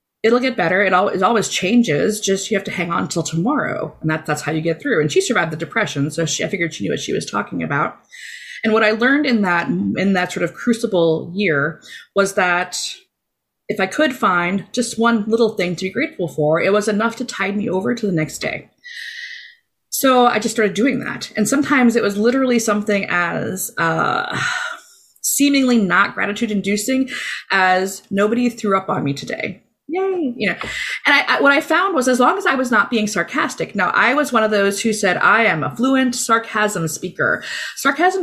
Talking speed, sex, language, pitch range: 200 wpm, female, English, 175-245 Hz